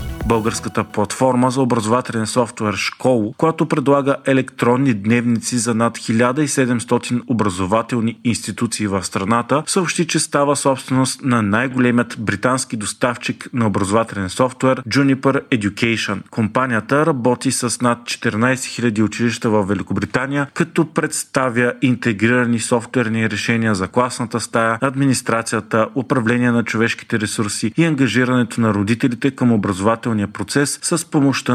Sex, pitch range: male, 110-130 Hz